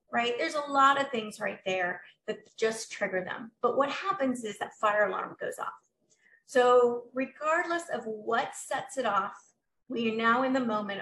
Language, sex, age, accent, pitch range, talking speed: English, female, 30-49, American, 205-260 Hz, 185 wpm